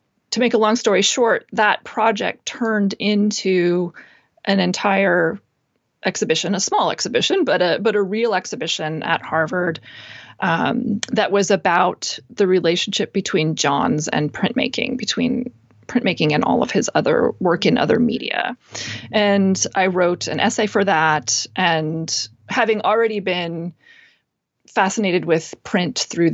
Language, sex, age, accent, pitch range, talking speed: English, female, 30-49, American, 170-220 Hz, 135 wpm